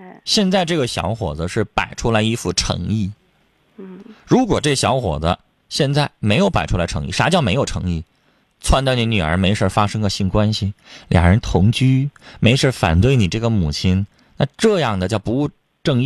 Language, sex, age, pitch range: Chinese, male, 20-39, 105-170 Hz